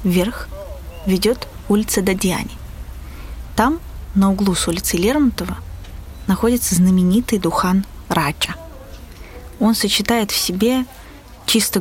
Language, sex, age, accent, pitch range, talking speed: Russian, female, 20-39, native, 160-210 Hz, 95 wpm